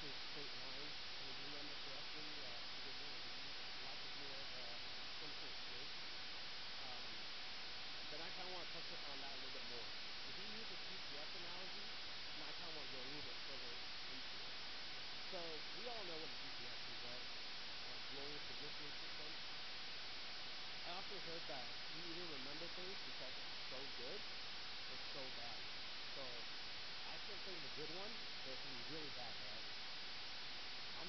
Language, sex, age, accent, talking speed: English, male, 40-59, American, 180 wpm